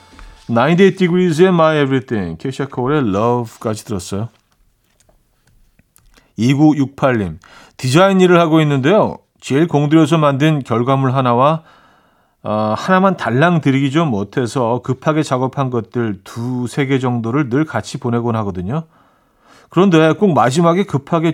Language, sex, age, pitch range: Korean, male, 40-59, 115-160 Hz